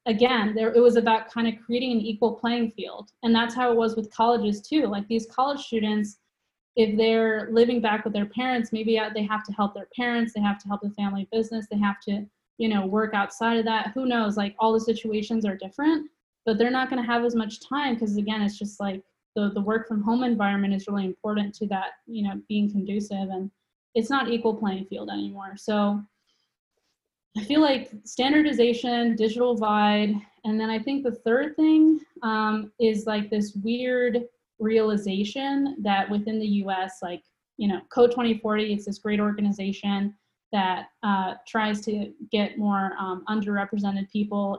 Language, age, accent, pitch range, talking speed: English, 20-39, American, 205-235 Hz, 190 wpm